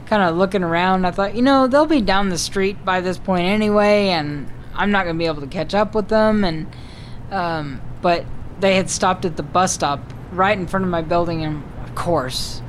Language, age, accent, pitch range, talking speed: English, 10-29, American, 160-205 Hz, 220 wpm